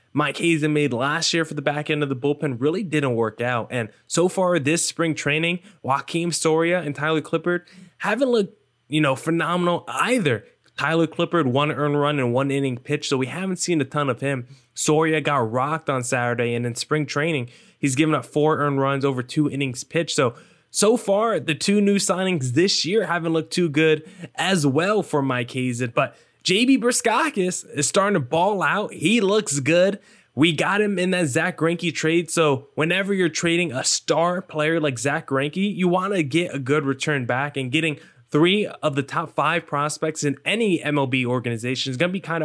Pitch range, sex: 140-175 Hz, male